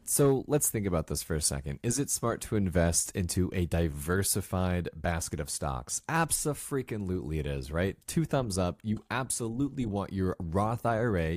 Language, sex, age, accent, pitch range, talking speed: English, male, 30-49, American, 90-115 Hz, 170 wpm